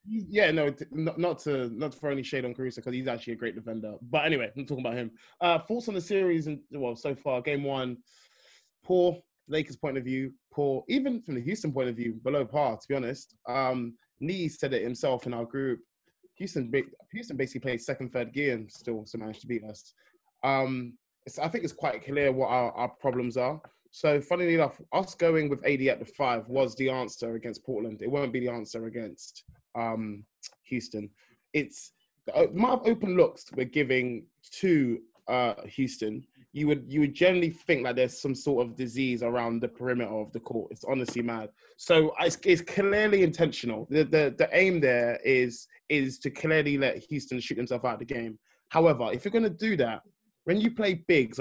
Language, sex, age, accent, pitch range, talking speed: English, male, 20-39, British, 120-160 Hz, 200 wpm